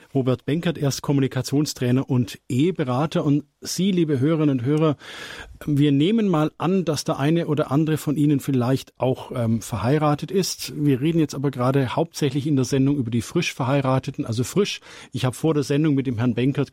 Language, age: German, 50-69